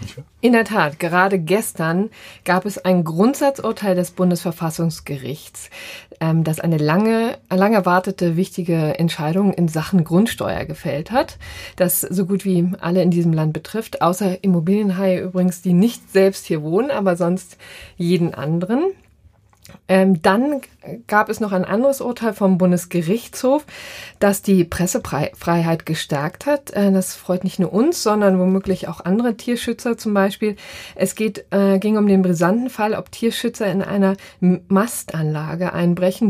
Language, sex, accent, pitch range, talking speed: German, female, German, 175-210 Hz, 140 wpm